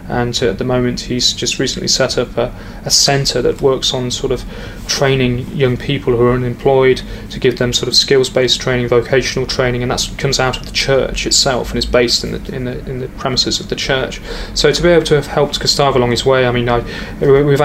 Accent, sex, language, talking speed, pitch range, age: British, male, English, 230 wpm, 125-140 Hz, 20-39